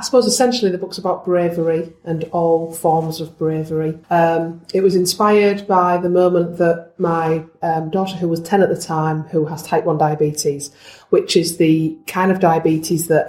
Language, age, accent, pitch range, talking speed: English, 30-49, British, 155-185 Hz, 185 wpm